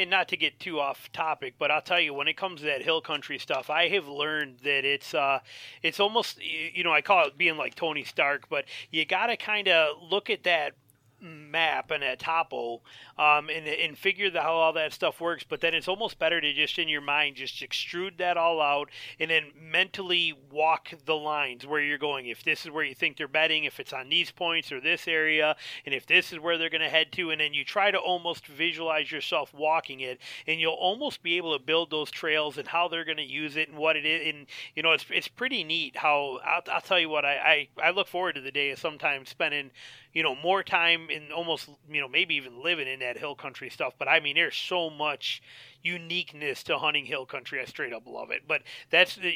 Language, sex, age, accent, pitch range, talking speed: English, male, 30-49, American, 145-170 Hz, 240 wpm